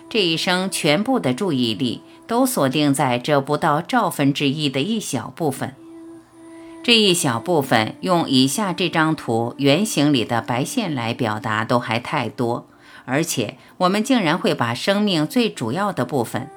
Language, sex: Chinese, female